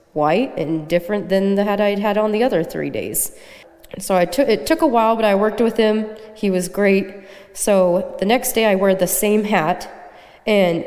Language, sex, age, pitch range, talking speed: English, female, 20-39, 175-210 Hz, 210 wpm